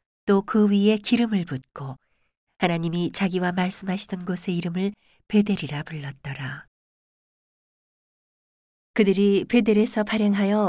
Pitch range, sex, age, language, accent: 165-210 Hz, female, 40-59, Korean, native